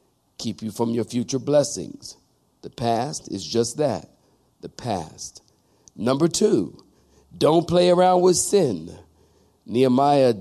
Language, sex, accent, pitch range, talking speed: English, male, American, 110-135 Hz, 120 wpm